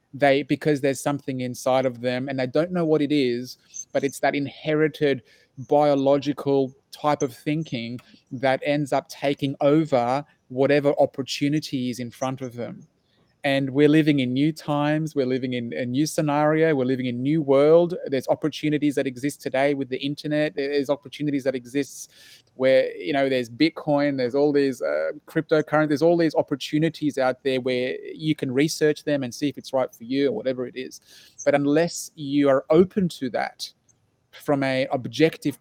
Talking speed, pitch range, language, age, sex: 175 wpm, 135-155 Hz, English, 30-49, male